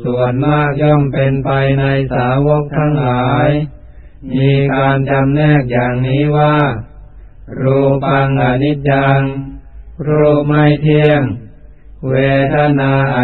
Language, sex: Thai, male